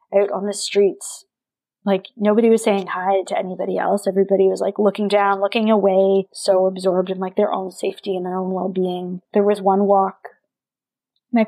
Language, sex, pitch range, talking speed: English, female, 190-210 Hz, 185 wpm